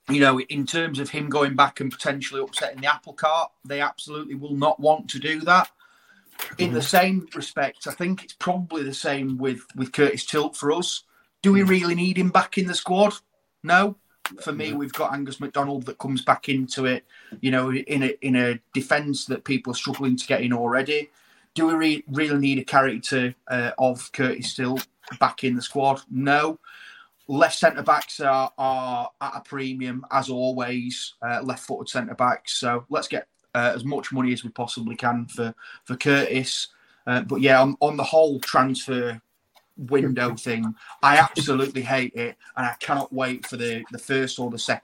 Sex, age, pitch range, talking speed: male, 30-49, 125-145 Hz, 185 wpm